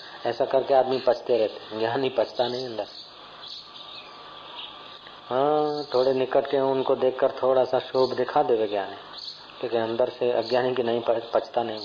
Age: 40-59